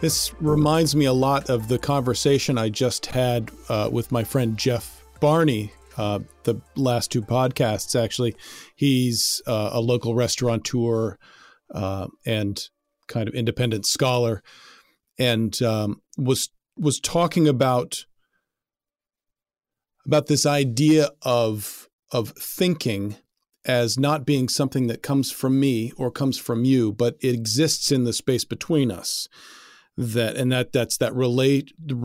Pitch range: 115-140 Hz